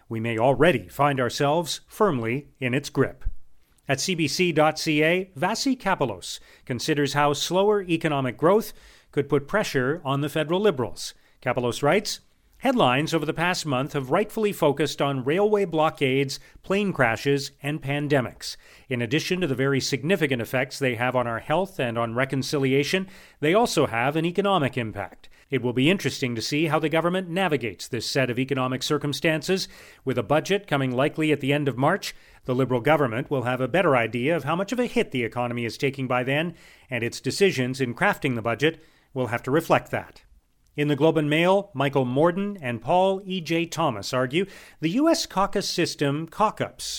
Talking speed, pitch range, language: 175 wpm, 130-170 Hz, English